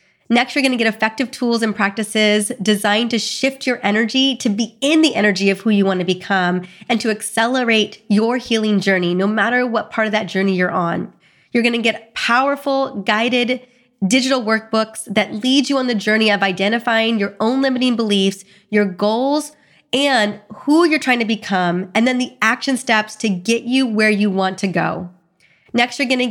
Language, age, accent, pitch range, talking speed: English, 30-49, American, 195-235 Hz, 190 wpm